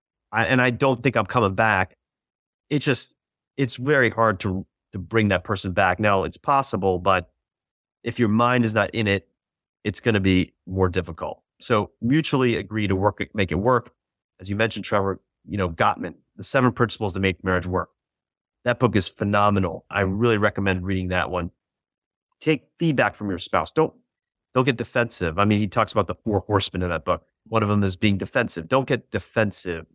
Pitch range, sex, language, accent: 95-120 Hz, male, English, American